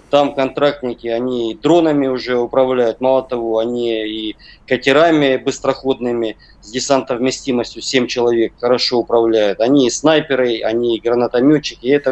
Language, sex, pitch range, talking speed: Russian, male, 120-150 Hz, 115 wpm